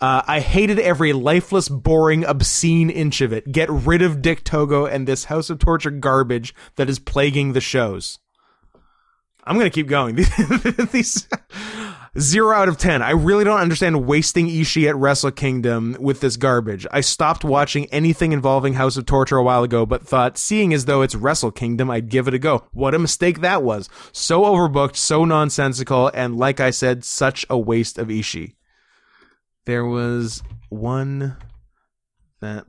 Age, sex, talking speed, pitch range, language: 20-39, male, 170 wpm, 120-150 Hz, English